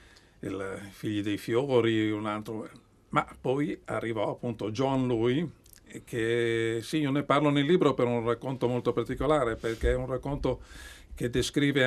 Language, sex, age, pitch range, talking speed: Italian, male, 50-69, 110-130 Hz, 150 wpm